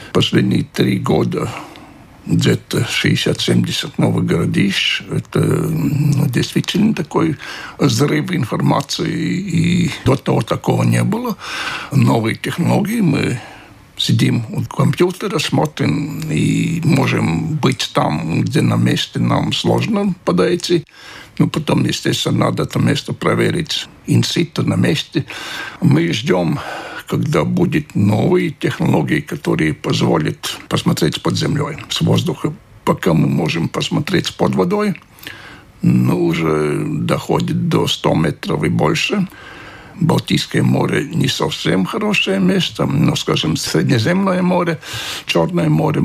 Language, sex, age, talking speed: Russian, male, 60-79, 110 wpm